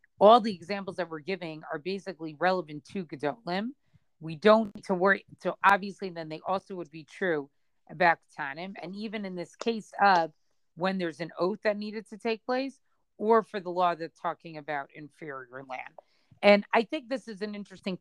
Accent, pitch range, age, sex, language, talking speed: American, 175-215 Hz, 40-59, female, English, 190 wpm